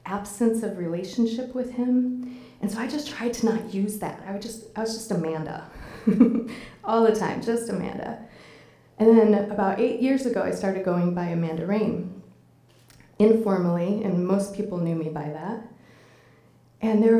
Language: English